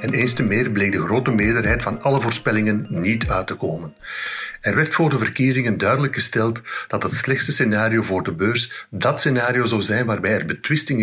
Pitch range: 105-130 Hz